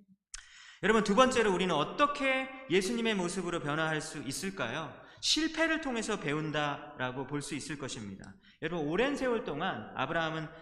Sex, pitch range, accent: male, 125-205 Hz, native